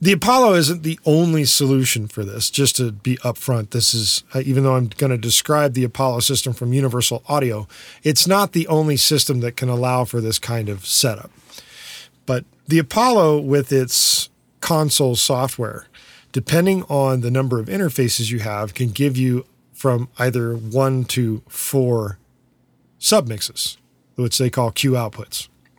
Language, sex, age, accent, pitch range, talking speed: English, male, 40-59, American, 115-140 Hz, 160 wpm